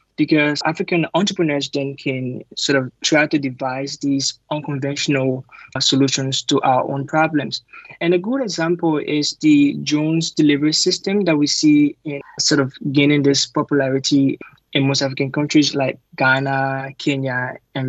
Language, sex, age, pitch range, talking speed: English, male, 20-39, 135-165 Hz, 150 wpm